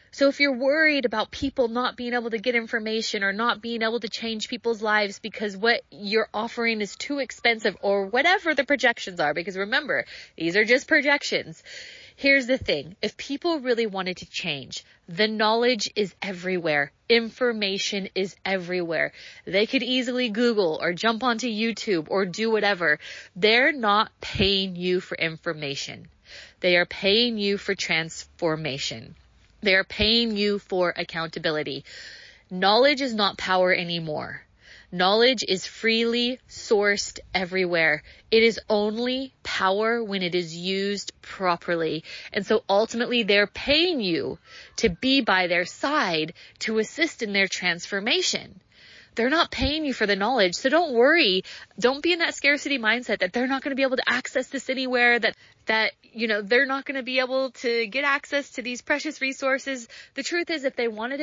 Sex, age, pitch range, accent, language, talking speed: female, 30-49, 190-255 Hz, American, English, 165 wpm